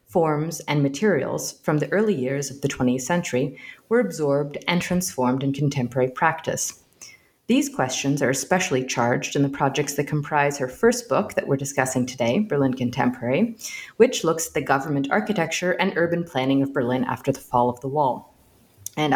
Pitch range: 130-180 Hz